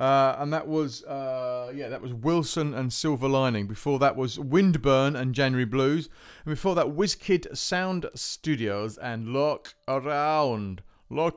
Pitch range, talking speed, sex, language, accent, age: 130-165 Hz, 155 wpm, male, English, British, 40-59